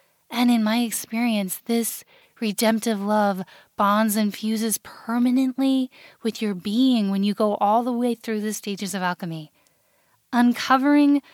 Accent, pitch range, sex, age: American, 205-255 Hz, female, 10-29